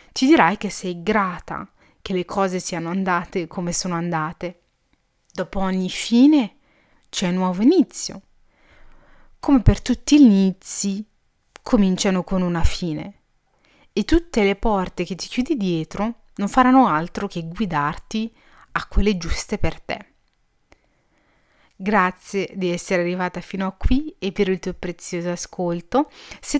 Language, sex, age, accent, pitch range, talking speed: Italian, female, 30-49, native, 175-215 Hz, 140 wpm